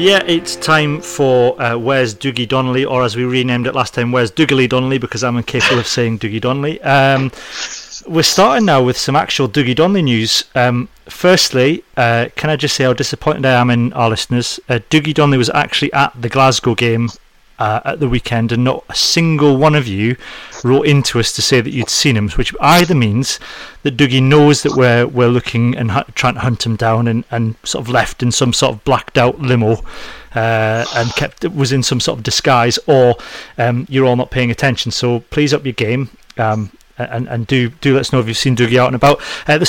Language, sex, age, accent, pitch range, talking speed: English, male, 30-49, British, 120-140 Hz, 220 wpm